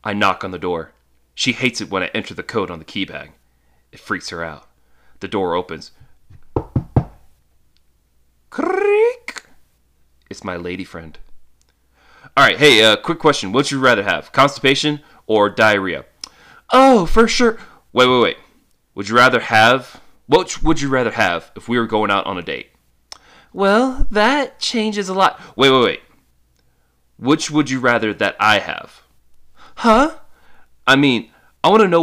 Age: 30-49